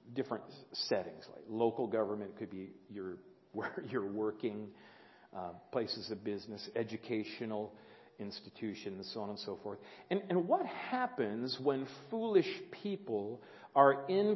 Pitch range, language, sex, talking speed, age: 130-215 Hz, English, male, 130 wpm, 50-69